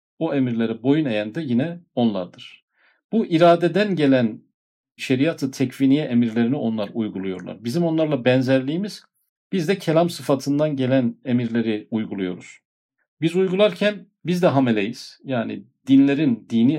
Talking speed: 120 wpm